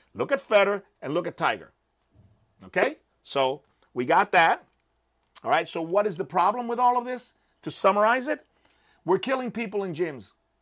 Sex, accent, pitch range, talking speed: male, American, 130-180 Hz, 175 wpm